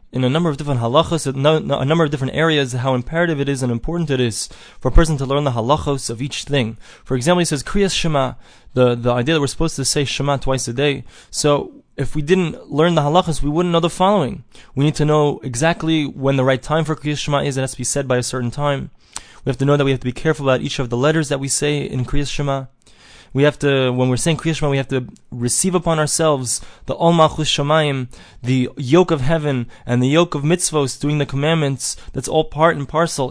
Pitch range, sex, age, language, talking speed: 130-155 Hz, male, 20-39, English, 245 wpm